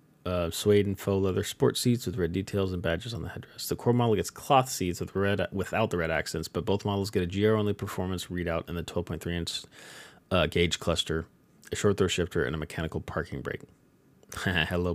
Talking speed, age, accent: 210 wpm, 30-49, American